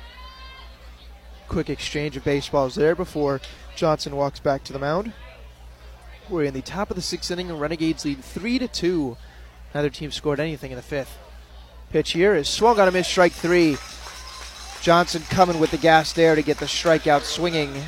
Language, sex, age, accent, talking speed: English, male, 20-39, American, 180 wpm